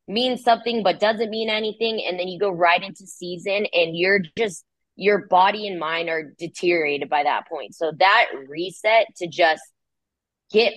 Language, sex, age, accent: English, female, 20-39, American